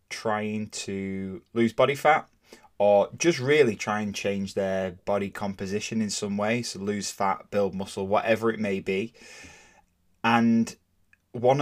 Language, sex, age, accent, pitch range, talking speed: English, male, 10-29, British, 95-115 Hz, 145 wpm